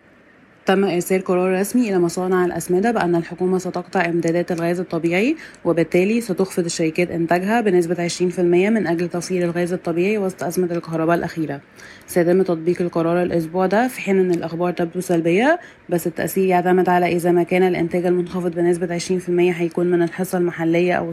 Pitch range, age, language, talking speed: 170-185 Hz, 20-39, Arabic, 155 wpm